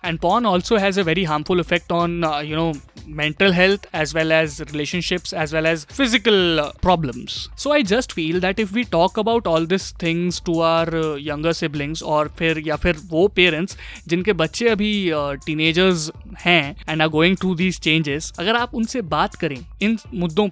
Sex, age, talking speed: male, 20-39, 195 wpm